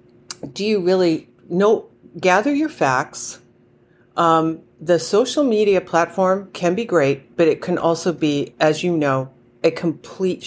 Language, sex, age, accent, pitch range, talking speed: English, female, 40-59, American, 140-170 Hz, 145 wpm